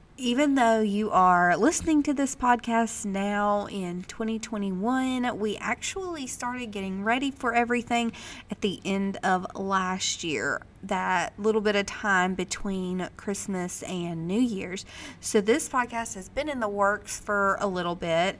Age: 30-49